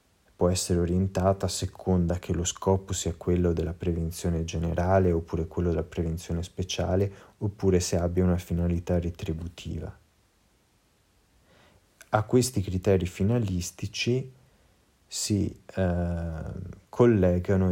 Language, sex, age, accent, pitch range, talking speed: Italian, male, 30-49, native, 85-95 Hz, 105 wpm